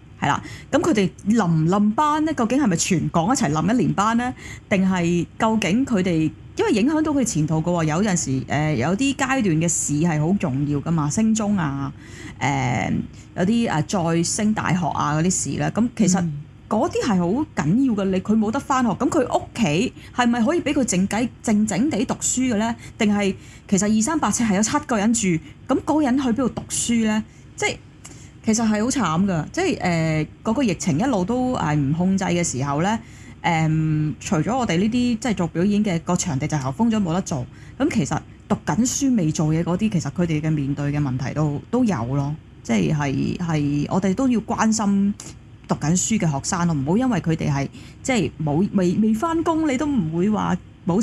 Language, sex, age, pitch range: Chinese, female, 30-49, 155-225 Hz